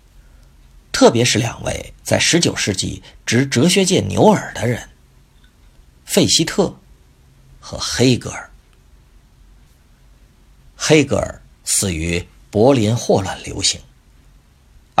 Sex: male